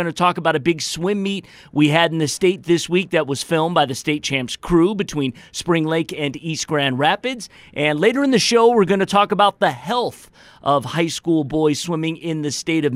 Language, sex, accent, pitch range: English, male, American, 160-200 Hz